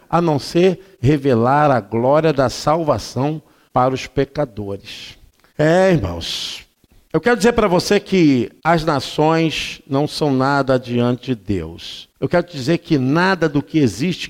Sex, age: male, 50-69